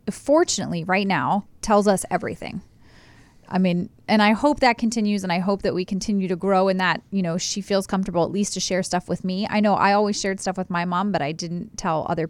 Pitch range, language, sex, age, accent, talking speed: 185-230 Hz, English, female, 30-49, American, 240 wpm